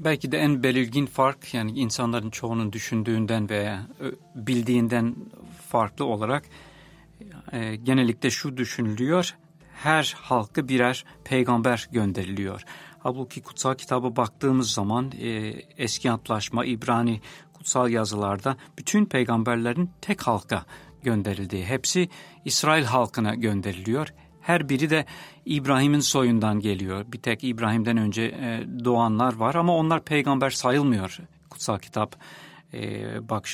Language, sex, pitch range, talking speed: English, male, 115-150 Hz, 105 wpm